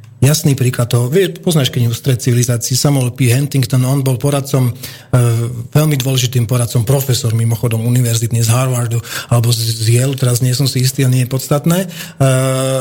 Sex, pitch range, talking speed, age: male, 120-140 Hz, 150 wpm, 30-49